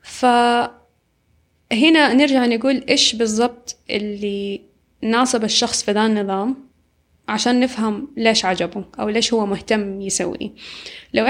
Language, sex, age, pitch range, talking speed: Arabic, female, 20-39, 210-235 Hz, 110 wpm